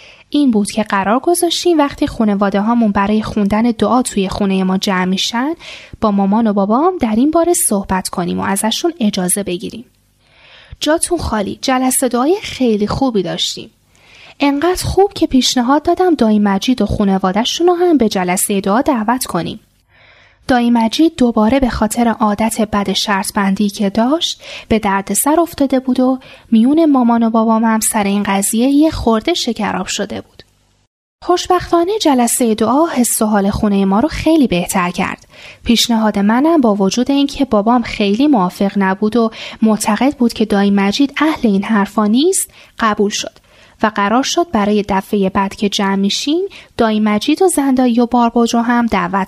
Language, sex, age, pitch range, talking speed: Persian, female, 10-29, 205-275 Hz, 150 wpm